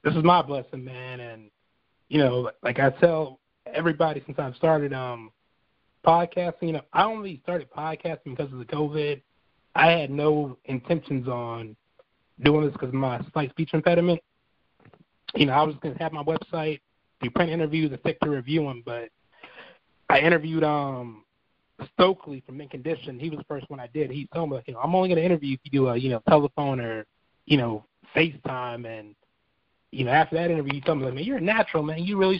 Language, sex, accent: English, male, American